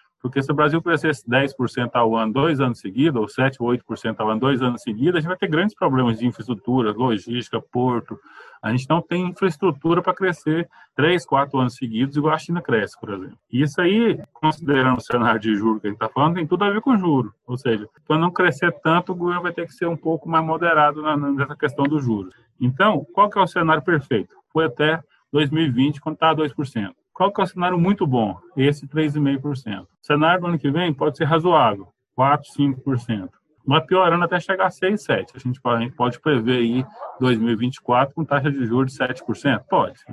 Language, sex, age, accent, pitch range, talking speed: Portuguese, male, 20-39, Brazilian, 120-160 Hz, 205 wpm